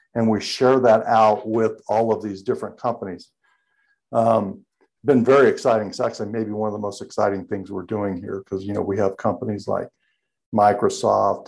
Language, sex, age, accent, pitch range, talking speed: English, male, 50-69, American, 105-125 Hz, 185 wpm